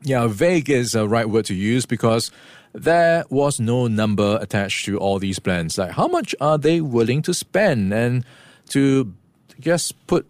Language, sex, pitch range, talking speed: English, male, 105-140 Hz, 175 wpm